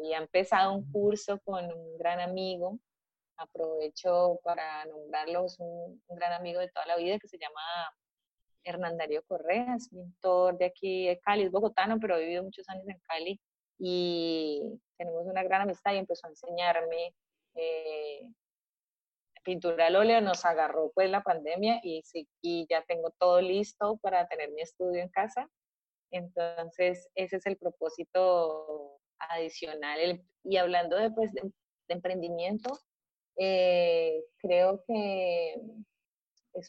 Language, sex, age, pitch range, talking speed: Spanish, female, 30-49, 170-200 Hz, 145 wpm